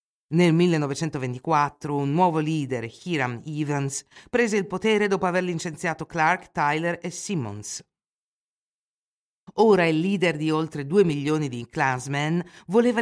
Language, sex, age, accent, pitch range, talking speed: Italian, female, 50-69, native, 150-200 Hz, 125 wpm